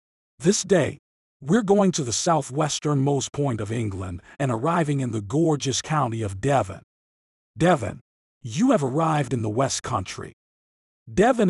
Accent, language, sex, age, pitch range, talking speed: American, English, male, 50-69, 115-160 Hz, 140 wpm